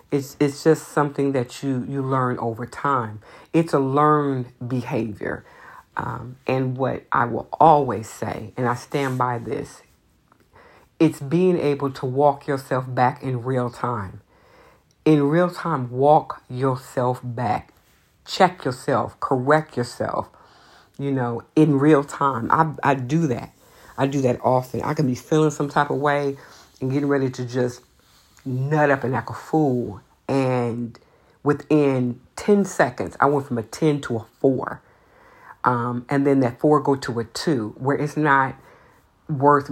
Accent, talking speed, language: American, 155 wpm, English